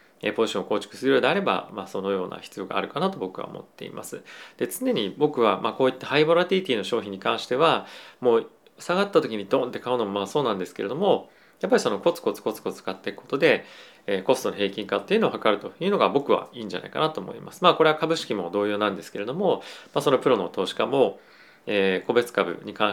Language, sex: Japanese, male